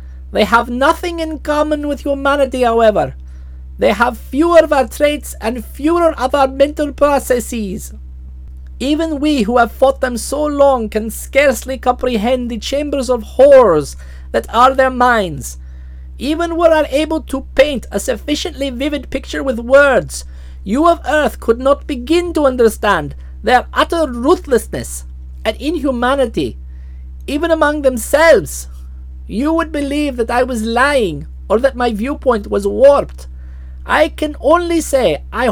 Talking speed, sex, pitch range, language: 145 wpm, male, 215-280 Hz, English